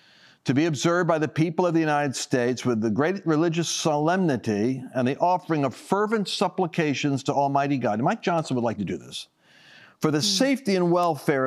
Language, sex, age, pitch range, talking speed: English, male, 50-69, 145-200 Hz, 190 wpm